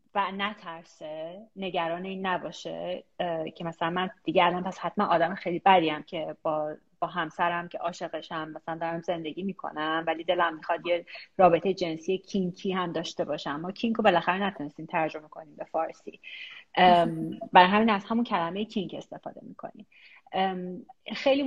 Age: 30-49